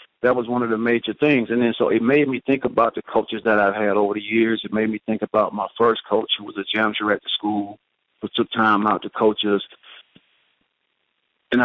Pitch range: 105-115 Hz